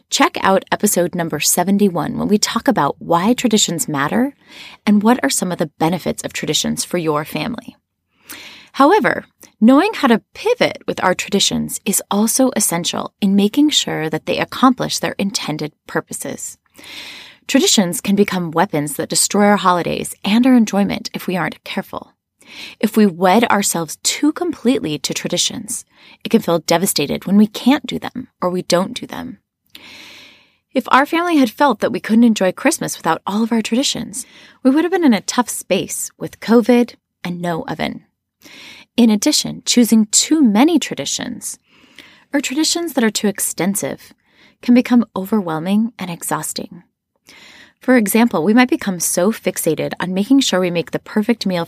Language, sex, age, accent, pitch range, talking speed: English, female, 20-39, American, 180-250 Hz, 165 wpm